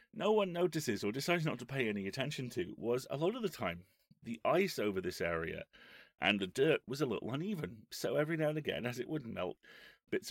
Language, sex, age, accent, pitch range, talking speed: English, male, 30-49, British, 95-140 Hz, 225 wpm